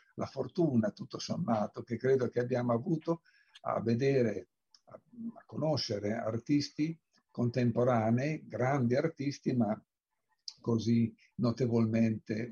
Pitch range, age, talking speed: 115-140 Hz, 60-79, 95 wpm